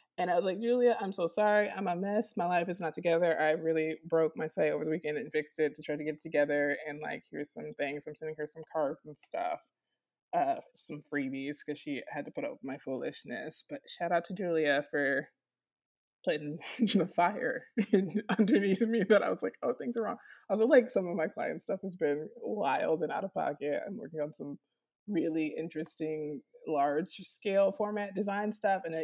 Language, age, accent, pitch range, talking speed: English, 20-39, American, 150-200 Hz, 210 wpm